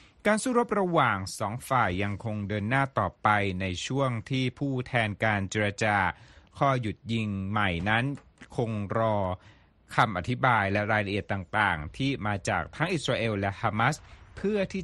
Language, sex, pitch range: Thai, male, 100-130 Hz